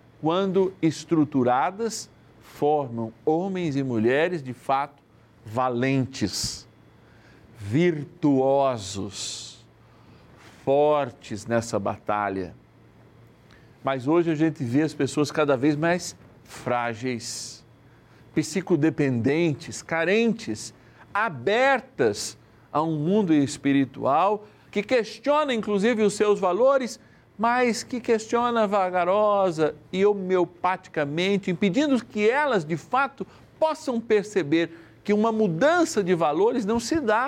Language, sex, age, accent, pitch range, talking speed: Portuguese, male, 60-79, Brazilian, 125-210 Hz, 95 wpm